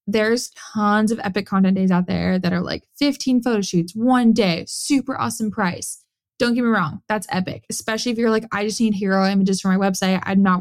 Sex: female